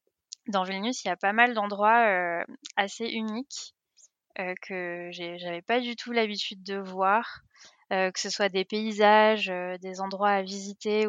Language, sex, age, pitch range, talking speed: French, female, 20-39, 185-220 Hz, 175 wpm